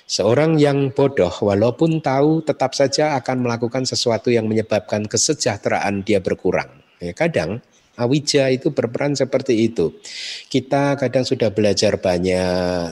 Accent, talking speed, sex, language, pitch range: native, 120 wpm, male, Indonesian, 95-130 Hz